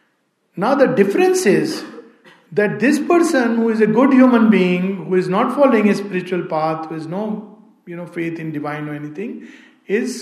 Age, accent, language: 50-69, native, Hindi